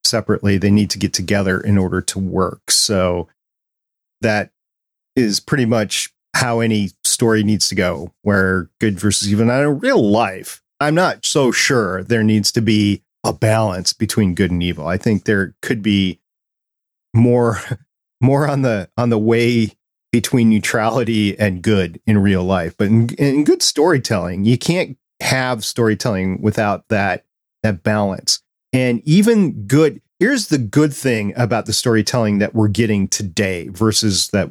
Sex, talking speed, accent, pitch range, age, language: male, 160 wpm, American, 100-120 Hz, 40-59, English